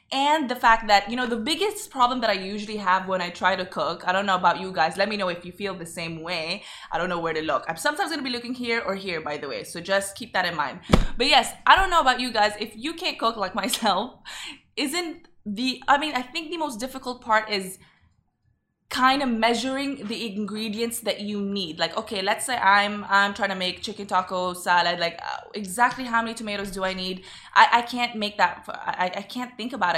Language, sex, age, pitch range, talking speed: Arabic, female, 20-39, 190-250 Hz, 240 wpm